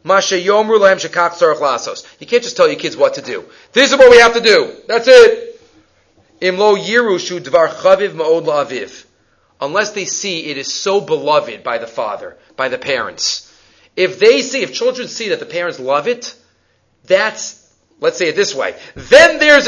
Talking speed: 150 wpm